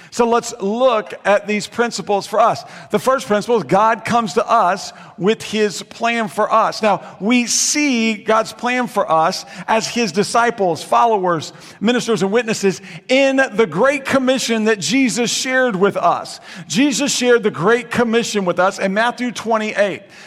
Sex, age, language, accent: male, 50-69, English, American